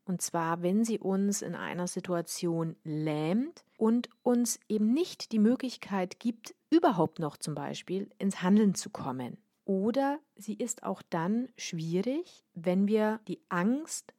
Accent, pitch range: German, 180-235 Hz